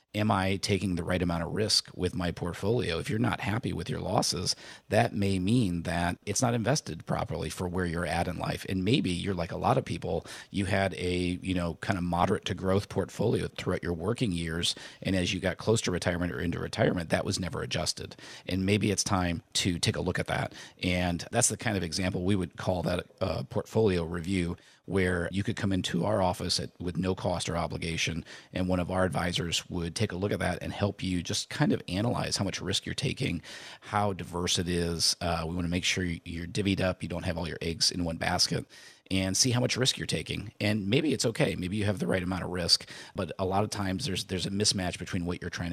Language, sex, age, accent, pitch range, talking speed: English, male, 40-59, American, 85-100 Hz, 235 wpm